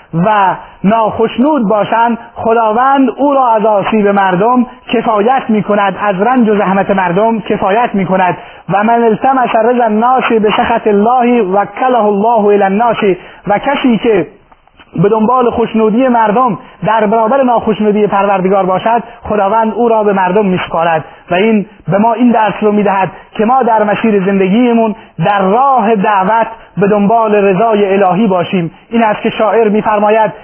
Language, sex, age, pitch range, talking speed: Persian, male, 30-49, 205-230 Hz, 155 wpm